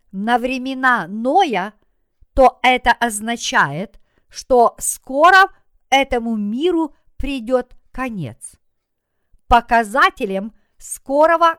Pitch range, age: 215-280 Hz, 50-69